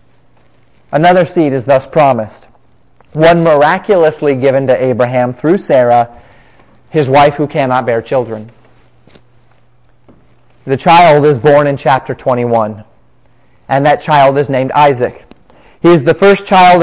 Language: English